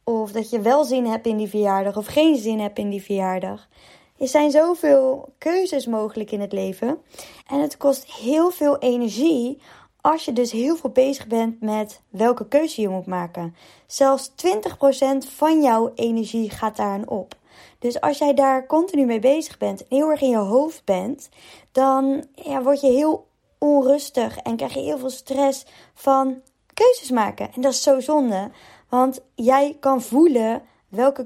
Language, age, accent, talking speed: Dutch, 20-39, Dutch, 175 wpm